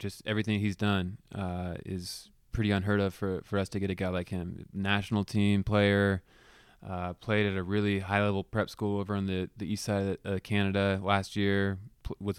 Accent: American